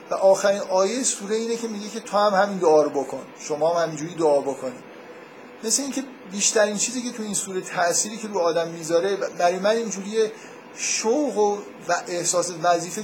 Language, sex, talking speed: Persian, male, 185 wpm